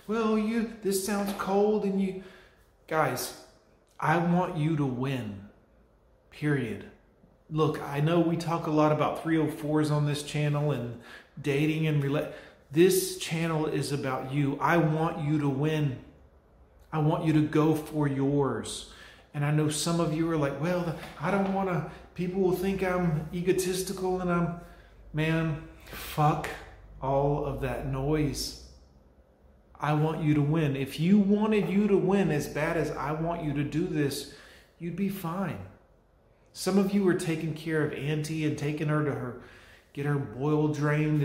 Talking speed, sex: 165 wpm, male